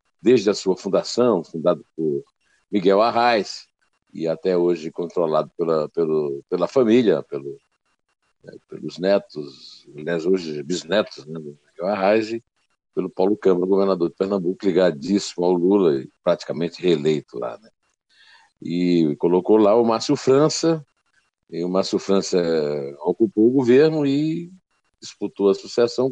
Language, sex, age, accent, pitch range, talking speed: Portuguese, male, 60-79, Brazilian, 95-155 Hz, 130 wpm